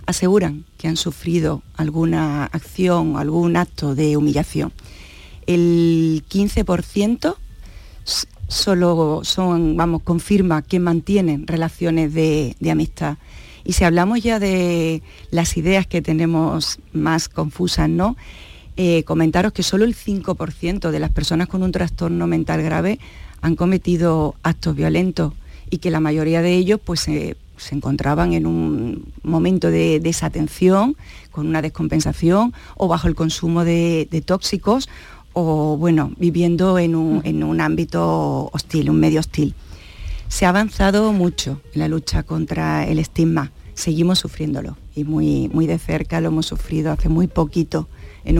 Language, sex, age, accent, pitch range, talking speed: Spanish, female, 40-59, Spanish, 155-175 Hz, 140 wpm